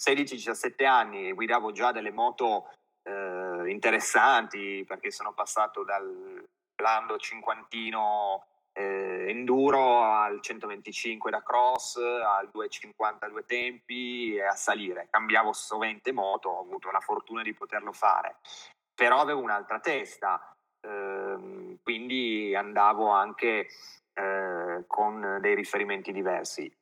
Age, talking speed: 30-49, 110 wpm